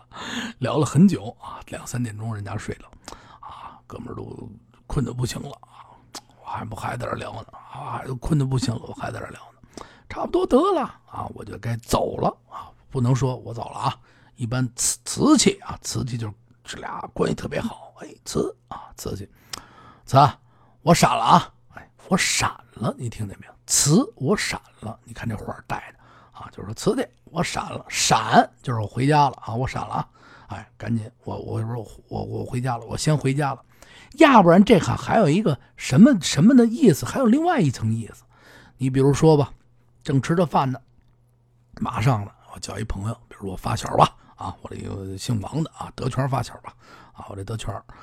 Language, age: Chinese, 50-69